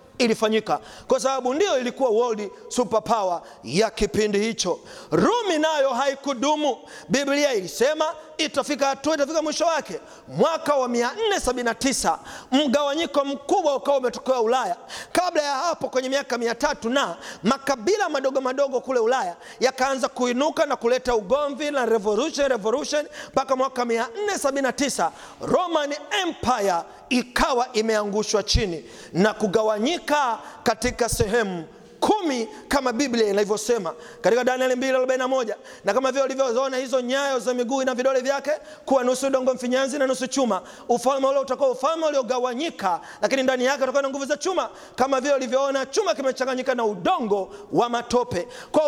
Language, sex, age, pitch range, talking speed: Swahili, male, 40-59, 250-290 Hz, 130 wpm